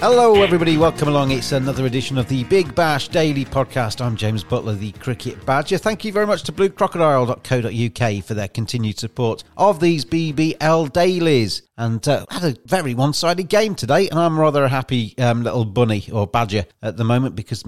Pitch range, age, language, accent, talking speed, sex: 120-155 Hz, 40-59, English, British, 190 wpm, male